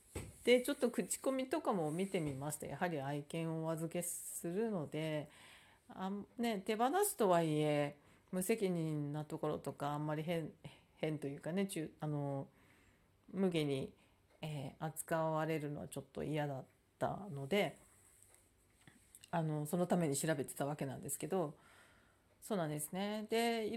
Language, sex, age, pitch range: Japanese, female, 40-59, 145-200 Hz